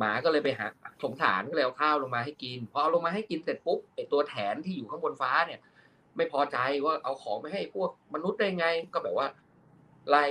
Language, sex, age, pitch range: Thai, male, 20-39, 130-165 Hz